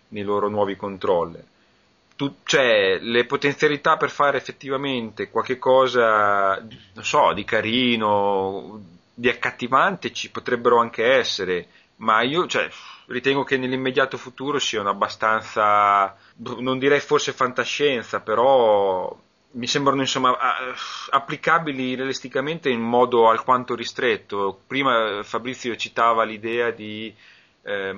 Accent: native